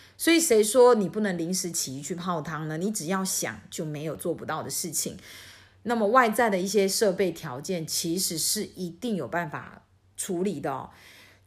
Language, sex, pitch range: Chinese, female, 150-205 Hz